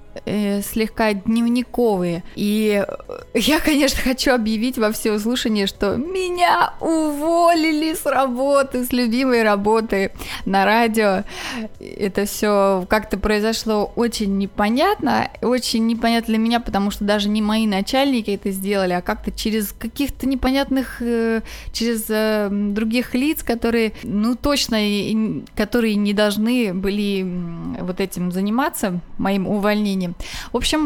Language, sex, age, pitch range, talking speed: Russian, female, 20-39, 205-260 Hz, 115 wpm